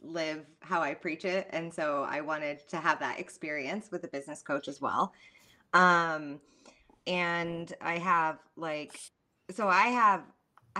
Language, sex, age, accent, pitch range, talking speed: English, female, 20-39, American, 140-165 Hz, 150 wpm